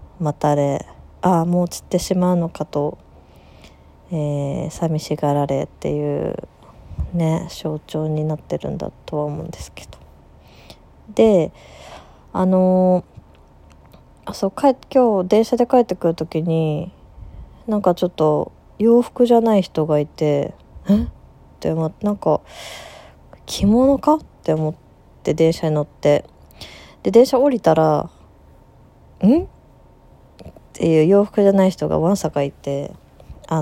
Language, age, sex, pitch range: Japanese, 20-39, female, 140-190 Hz